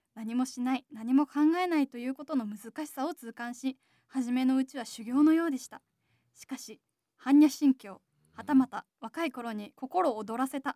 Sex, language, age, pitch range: female, Japanese, 10-29, 235-285 Hz